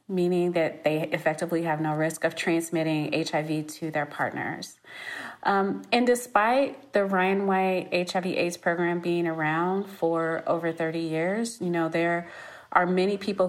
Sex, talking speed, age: female, 150 wpm, 30-49